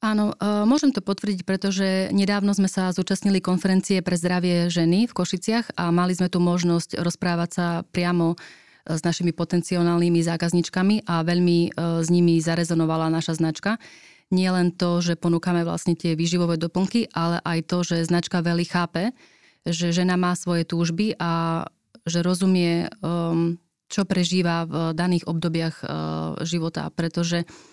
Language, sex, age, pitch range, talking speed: Slovak, female, 30-49, 170-185 Hz, 140 wpm